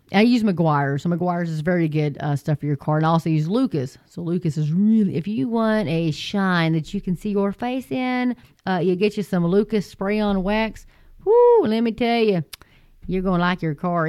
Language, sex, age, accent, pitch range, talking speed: English, female, 30-49, American, 160-205 Hz, 225 wpm